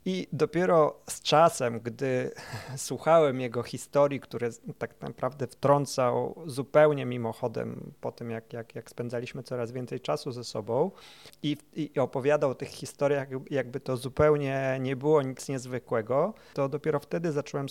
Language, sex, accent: Polish, male, native